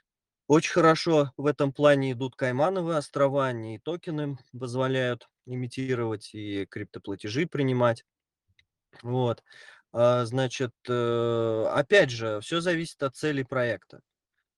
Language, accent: Russian, native